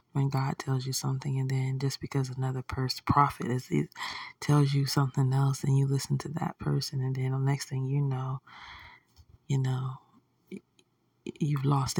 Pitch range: 130-150 Hz